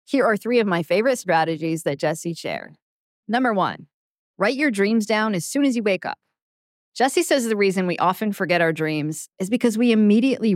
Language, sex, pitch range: English, female, 170-225 Hz